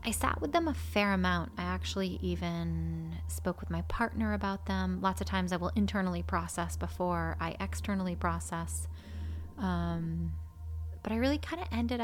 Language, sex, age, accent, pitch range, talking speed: English, female, 30-49, American, 80-90 Hz, 170 wpm